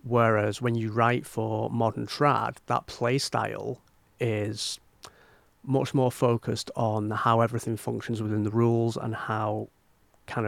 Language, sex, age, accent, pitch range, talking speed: English, male, 30-49, British, 105-120 Hz, 130 wpm